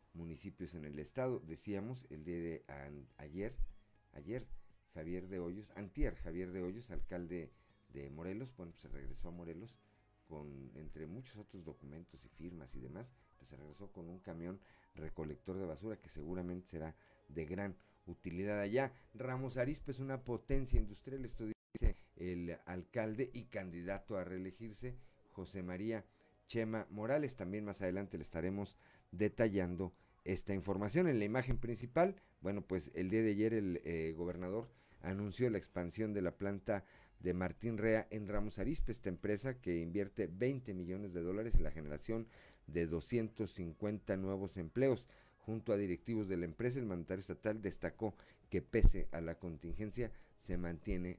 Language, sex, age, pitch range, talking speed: Spanish, male, 50-69, 85-115 Hz, 160 wpm